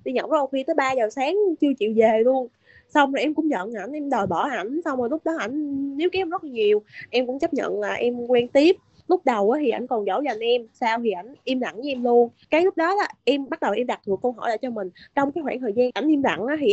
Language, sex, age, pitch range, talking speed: Vietnamese, female, 20-39, 230-310 Hz, 285 wpm